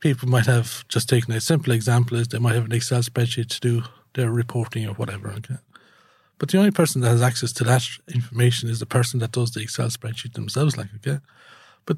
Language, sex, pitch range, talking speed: English, male, 120-140 Hz, 220 wpm